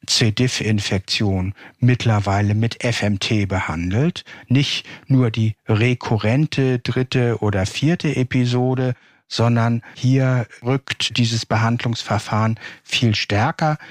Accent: German